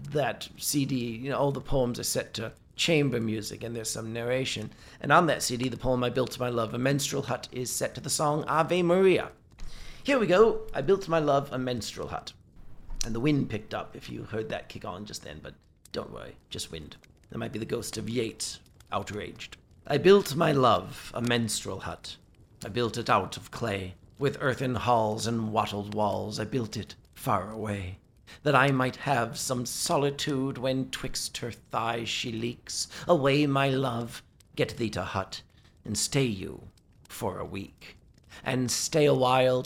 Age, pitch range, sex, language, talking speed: 40-59, 110-140 Hz, male, English, 190 wpm